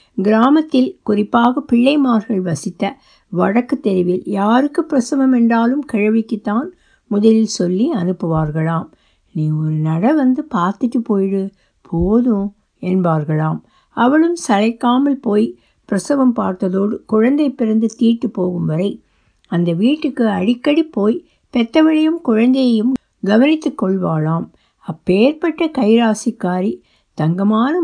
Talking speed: 90 wpm